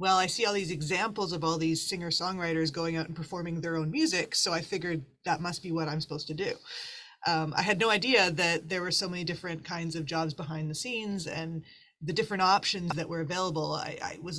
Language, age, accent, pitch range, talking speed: English, 30-49, American, 160-185 Hz, 235 wpm